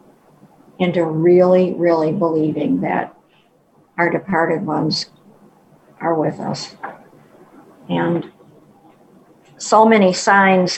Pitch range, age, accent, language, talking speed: 165-200 Hz, 50-69, American, English, 85 wpm